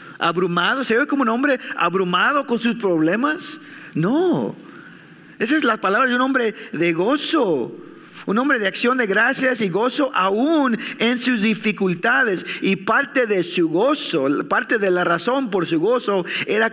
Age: 50-69